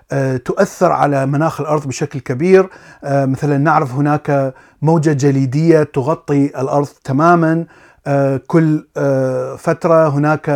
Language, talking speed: Arabic, 95 wpm